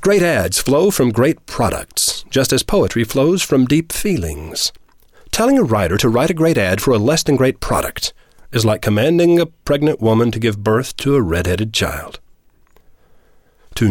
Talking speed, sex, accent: 170 wpm, male, American